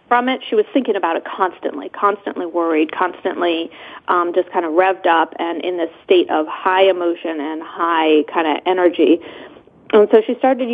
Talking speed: 185 wpm